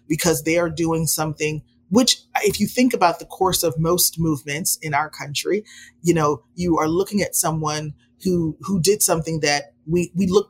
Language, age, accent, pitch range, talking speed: English, 30-49, American, 150-175 Hz, 190 wpm